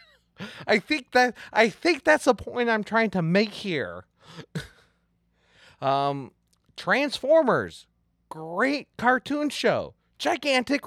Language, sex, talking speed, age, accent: English, male, 105 wpm, 30-49, American